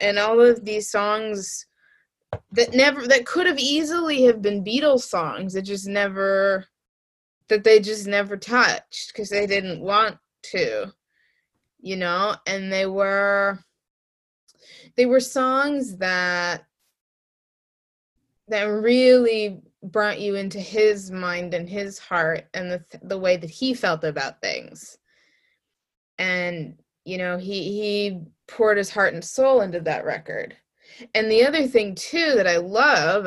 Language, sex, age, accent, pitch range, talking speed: English, female, 20-39, American, 185-245 Hz, 140 wpm